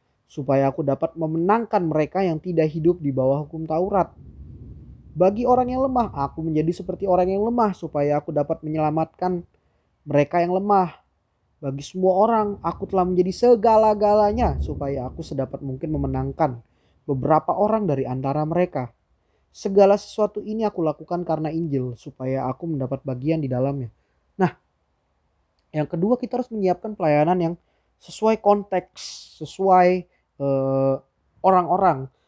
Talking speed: 135 wpm